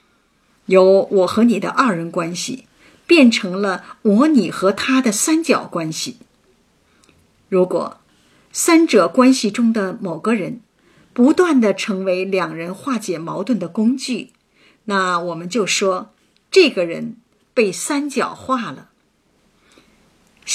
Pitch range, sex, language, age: 185-260 Hz, female, Chinese, 50-69